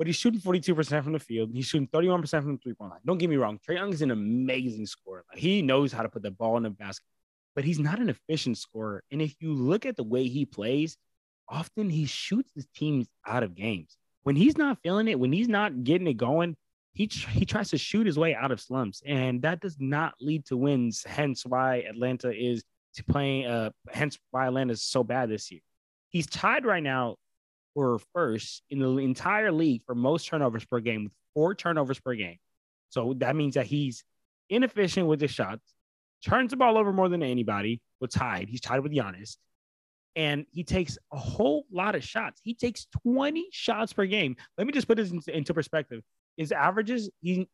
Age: 20-39